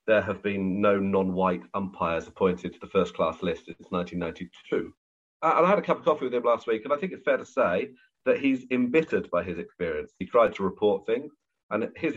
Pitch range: 90-145 Hz